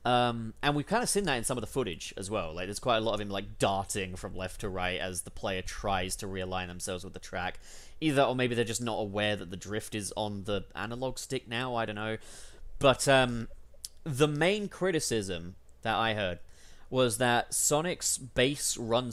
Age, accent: 20-39, British